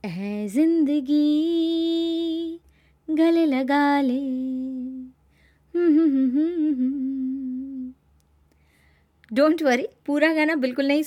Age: 20-39